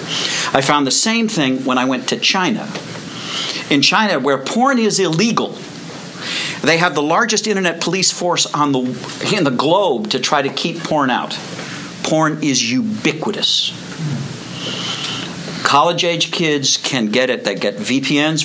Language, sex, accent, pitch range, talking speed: English, male, American, 125-170 Hz, 145 wpm